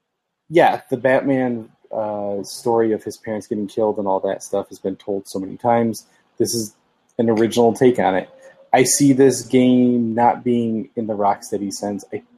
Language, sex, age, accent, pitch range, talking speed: English, male, 20-39, American, 105-130 Hz, 185 wpm